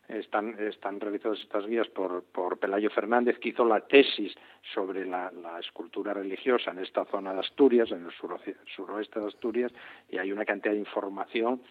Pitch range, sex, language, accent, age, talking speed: 105-130 Hz, male, Spanish, Spanish, 50-69, 180 wpm